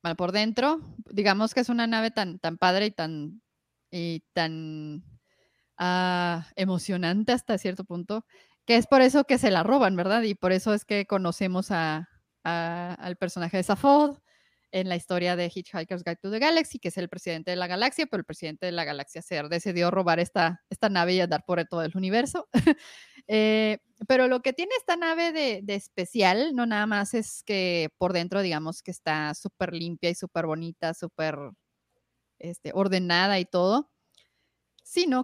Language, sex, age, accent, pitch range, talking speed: Spanish, female, 20-39, Mexican, 170-225 Hz, 180 wpm